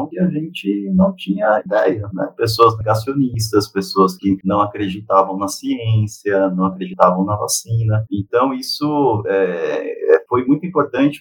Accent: Brazilian